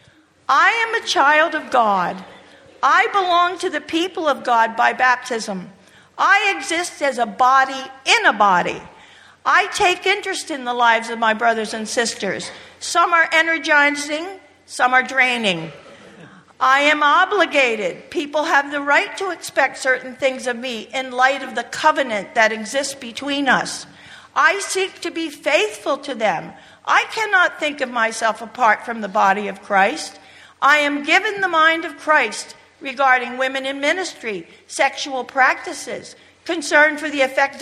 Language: English